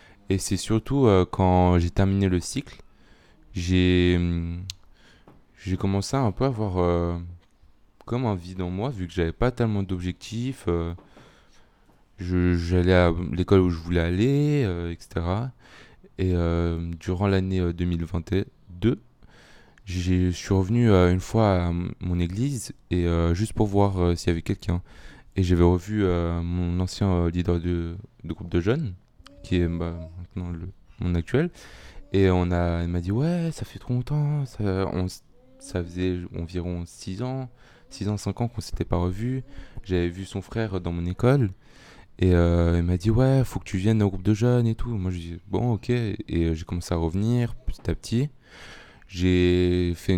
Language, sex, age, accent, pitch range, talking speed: French, male, 20-39, French, 85-110 Hz, 180 wpm